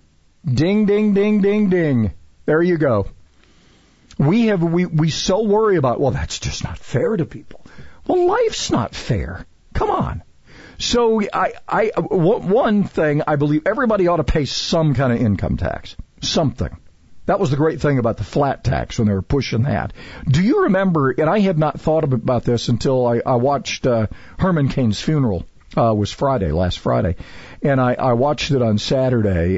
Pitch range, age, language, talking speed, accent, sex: 105-150 Hz, 50-69, English, 180 wpm, American, male